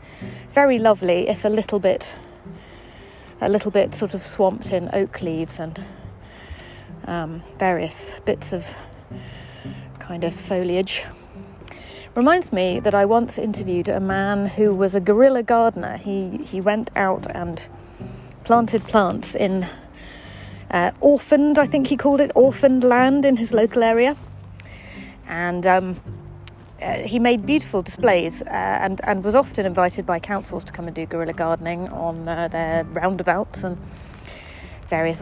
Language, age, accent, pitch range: English, 30-49, British, 165-225 Hz